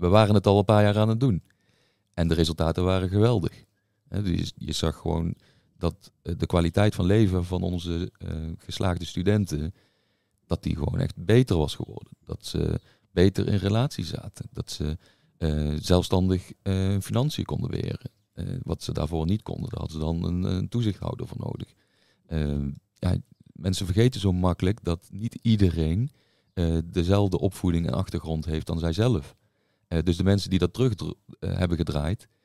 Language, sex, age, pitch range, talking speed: Dutch, male, 40-59, 85-110 Hz, 165 wpm